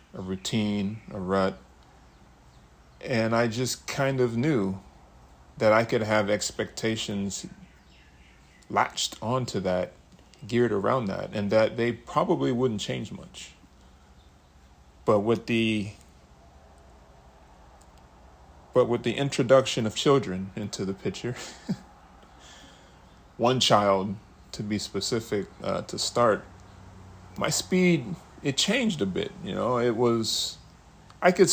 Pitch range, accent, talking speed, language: 75-115 Hz, American, 115 wpm, English